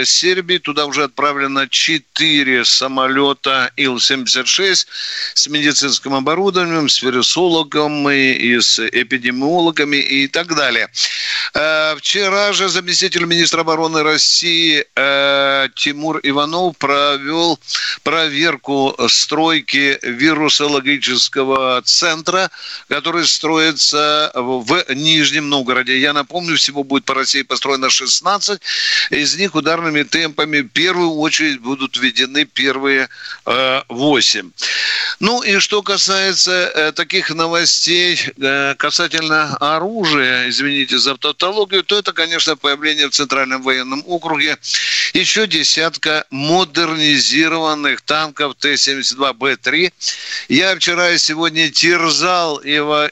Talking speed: 100 wpm